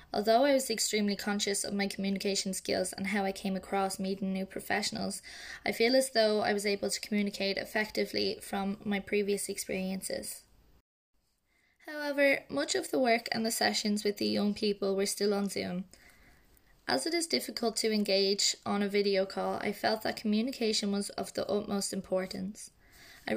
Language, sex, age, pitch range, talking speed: English, female, 20-39, 195-215 Hz, 170 wpm